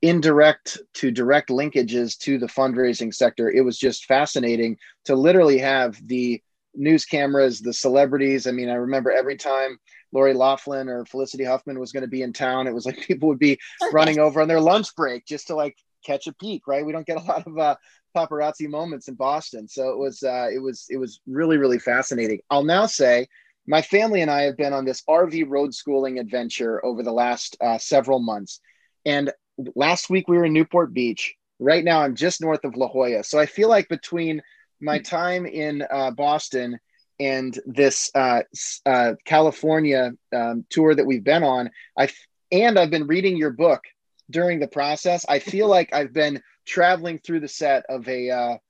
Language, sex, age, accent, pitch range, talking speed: English, male, 30-49, American, 130-155 Hz, 195 wpm